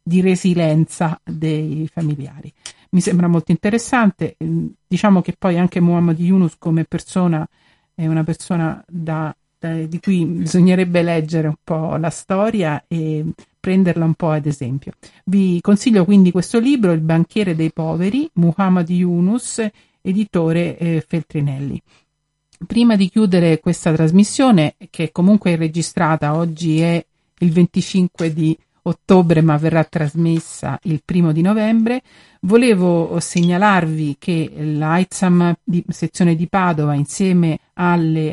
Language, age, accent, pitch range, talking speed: Italian, 50-69, native, 160-180 Hz, 125 wpm